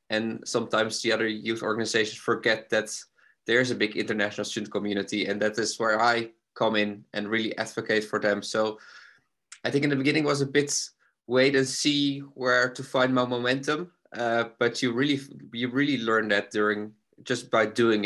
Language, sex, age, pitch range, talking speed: English, male, 20-39, 105-120 Hz, 185 wpm